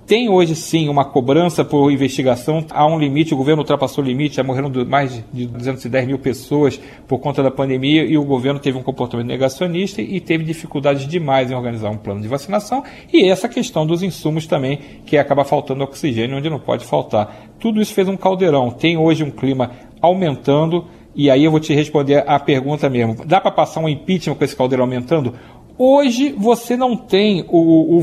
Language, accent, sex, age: Portuguese, Brazilian, male, 40-59